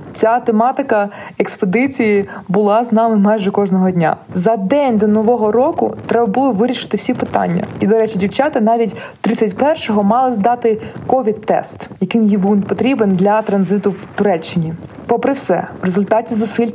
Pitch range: 200-240 Hz